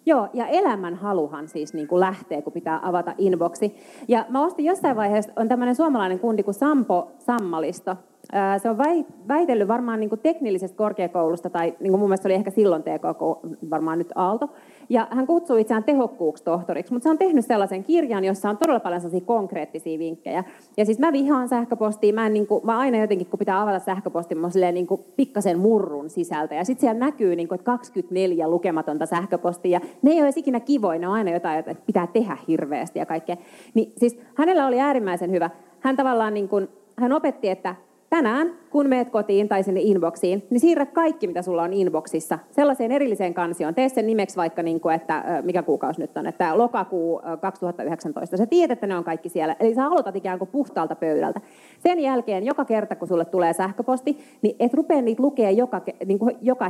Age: 30-49